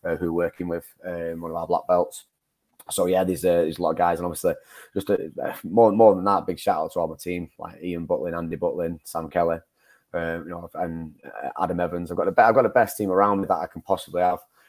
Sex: male